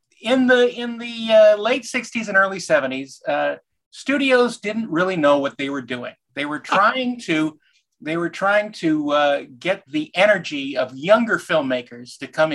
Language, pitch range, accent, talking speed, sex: English, 130-210 Hz, American, 170 wpm, male